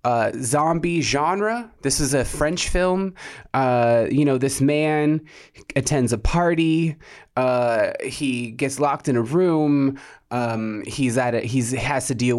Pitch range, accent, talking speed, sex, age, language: 130-165 Hz, American, 150 wpm, male, 20-39, English